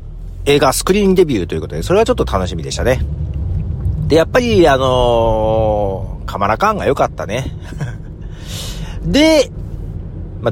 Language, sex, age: Japanese, male, 40-59